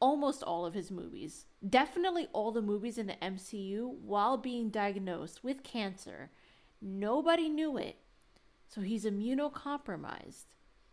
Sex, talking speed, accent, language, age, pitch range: female, 125 wpm, American, English, 20-39, 190-245 Hz